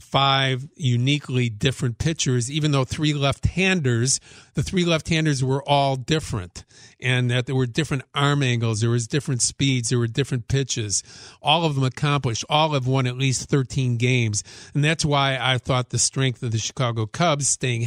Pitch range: 125-145 Hz